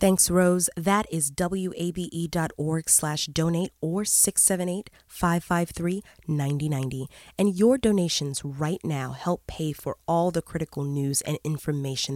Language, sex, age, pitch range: English, female, 20-39, 145-180 Hz